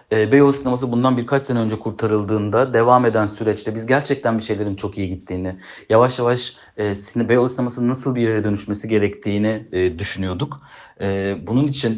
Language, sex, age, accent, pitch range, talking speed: Turkish, male, 30-49, native, 105-130 Hz, 170 wpm